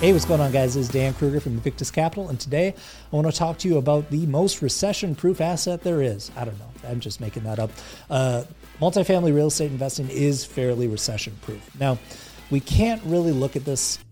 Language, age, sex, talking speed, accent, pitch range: English, 30-49, male, 210 wpm, American, 115-150 Hz